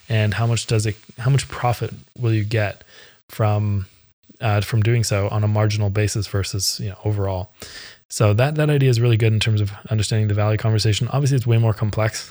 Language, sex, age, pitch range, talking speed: English, male, 20-39, 105-120 Hz, 210 wpm